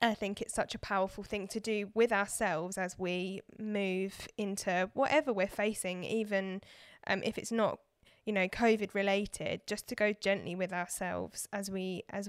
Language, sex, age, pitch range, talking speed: English, female, 10-29, 190-210 Hz, 175 wpm